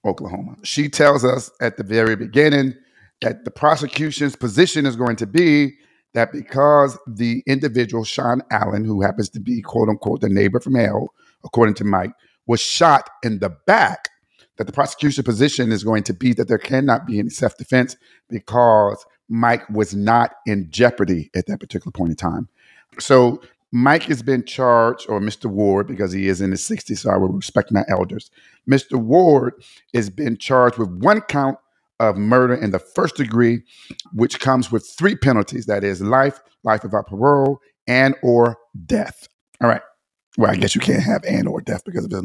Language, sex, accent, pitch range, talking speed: English, male, American, 110-135 Hz, 180 wpm